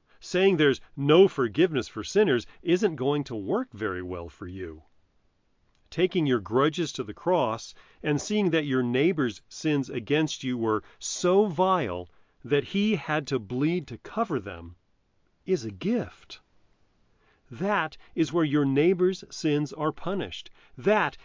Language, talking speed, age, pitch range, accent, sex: English, 145 wpm, 40-59, 115-170 Hz, American, male